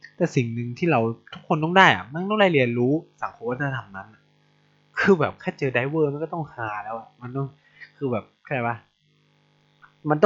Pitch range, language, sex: 115-155 Hz, Thai, male